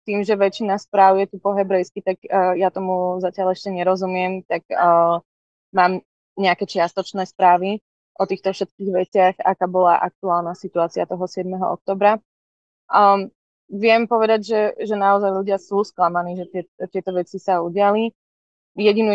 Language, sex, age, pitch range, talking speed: Slovak, female, 20-39, 175-195 Hz, 140 wpm